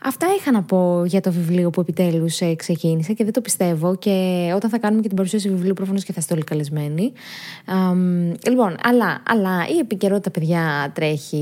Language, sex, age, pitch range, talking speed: Greek, female, 20-39, 170-245 Hz, 185 wpm